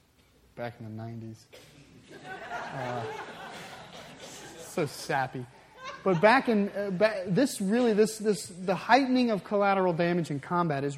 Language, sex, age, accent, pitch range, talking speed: English, male, 30-49, American, 145-200 Hz, 120 wpm